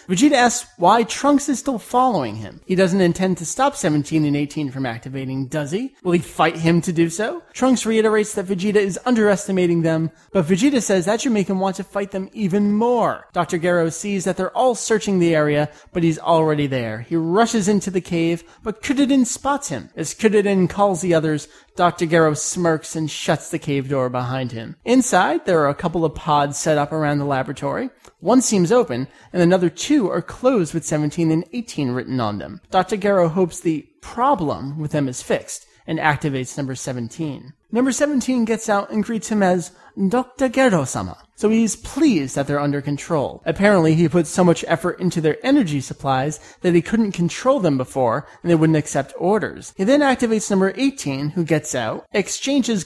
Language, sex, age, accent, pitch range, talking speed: English, male, 30-49, American, 155-215 Hz, 195 wpm